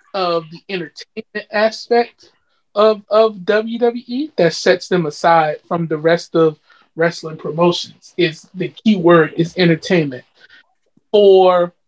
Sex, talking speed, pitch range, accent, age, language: male, 120 wpm, 185-240 Hz, American, 30-49, English